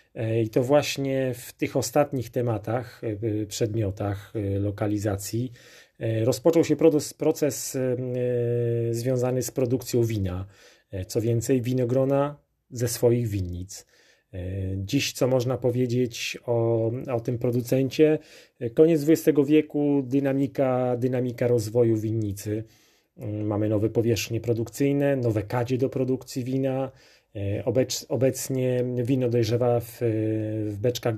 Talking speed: 100 wpm